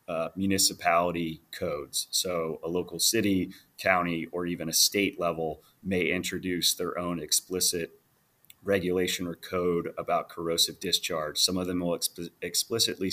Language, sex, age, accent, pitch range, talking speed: English, male, 30-49, American, 85-90 Hz, 135 wpm